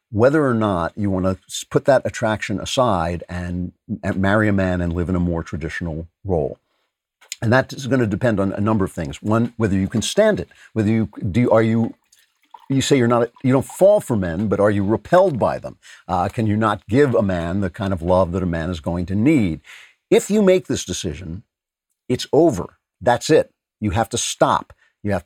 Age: 50-69